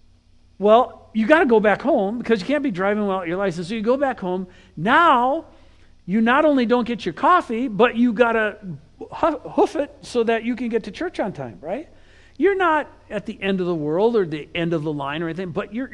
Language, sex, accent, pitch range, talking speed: English, male, American, 155-240 Hz, 235 wpm